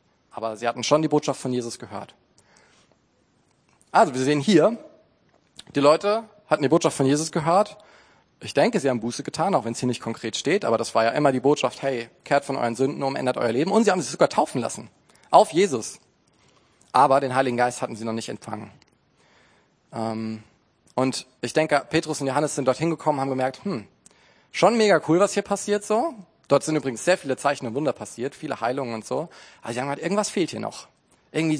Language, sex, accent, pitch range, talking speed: German, male, German, 120-155 Hz, 205 wpm